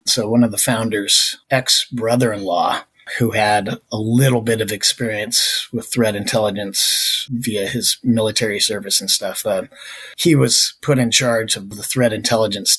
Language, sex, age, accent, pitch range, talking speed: English, male, 30-49, American, 105-120 Hz, 150 wpm